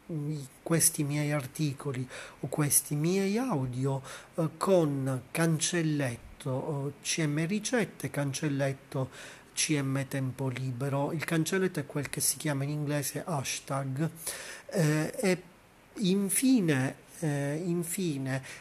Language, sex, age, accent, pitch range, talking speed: Italian, male, 40-59, native, 135-160 Hz, 100 wpm